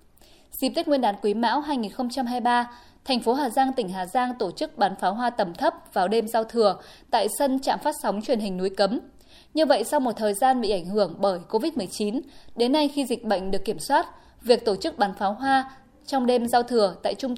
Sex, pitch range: female, 205-275 Hz